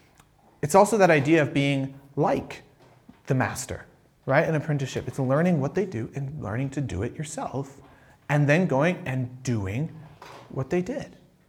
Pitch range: 130-180 Hz